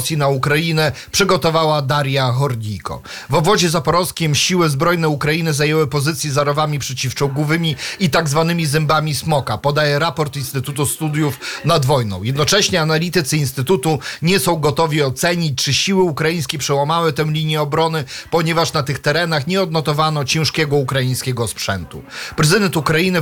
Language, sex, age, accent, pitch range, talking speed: Polish, male, 40-59, native, 140-165 Hz, 130 wpm